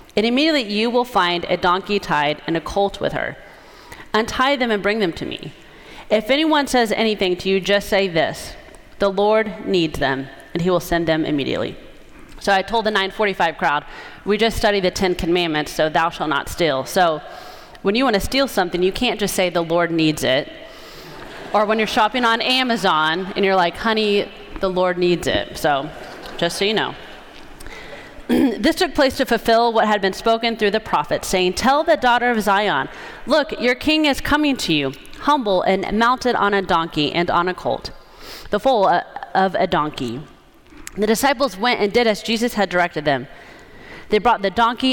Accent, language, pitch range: American, English, 180-235 Hz